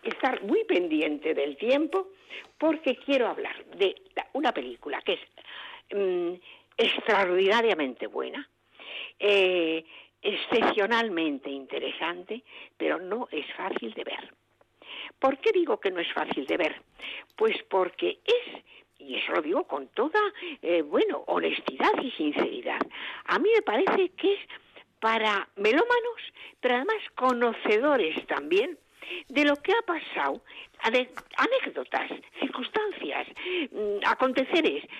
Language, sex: Spanish, female